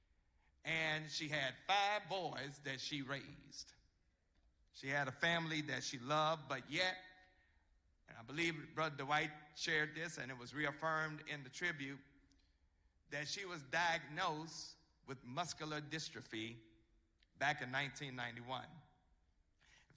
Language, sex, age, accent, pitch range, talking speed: English, male, 50-69, American, 130-155 Hz, 125 wpm